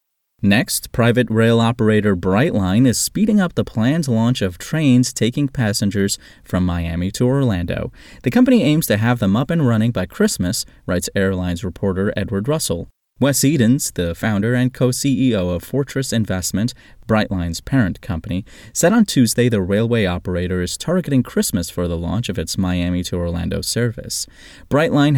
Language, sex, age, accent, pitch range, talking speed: English, male, 20-39, American, 90-125 Hz, 155 wpm